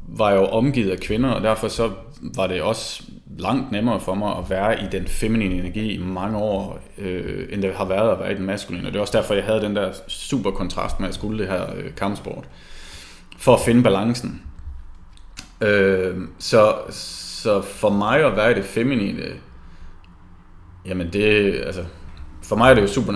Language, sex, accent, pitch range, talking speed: Danish, male, native, 85-105 Hz, 185 wpm